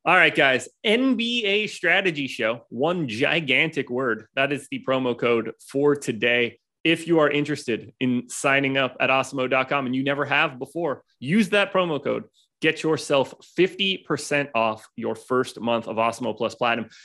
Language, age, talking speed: English, 30-49, 160 wpm